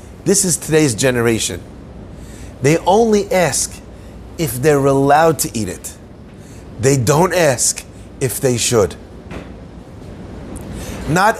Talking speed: 105 wpm